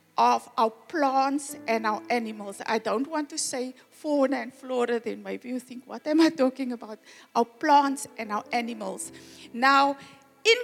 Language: English